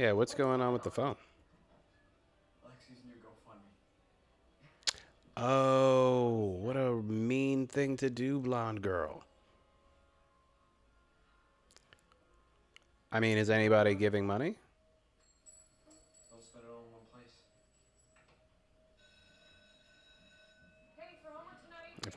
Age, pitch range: 30-49, 95-130 Hz